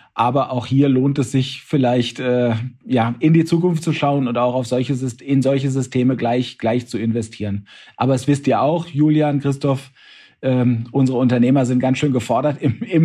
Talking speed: 190 wpm